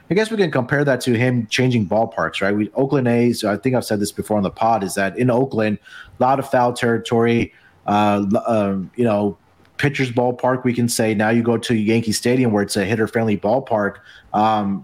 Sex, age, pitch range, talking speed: male, 30-49, 105-125 Hz, 215 wpm